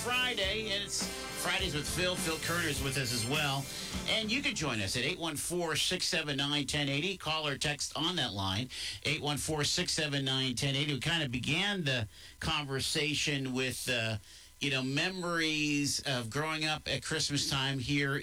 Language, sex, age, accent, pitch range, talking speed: English, male, 50-69, American, 110-160 Hz, 160 wpm